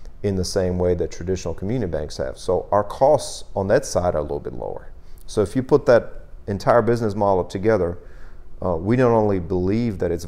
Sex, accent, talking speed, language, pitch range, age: male, American, 215 wpm, English, 80-100 Hz, 40-59